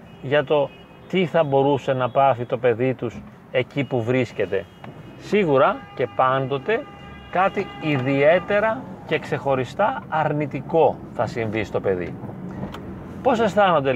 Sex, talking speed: male, 115 wpm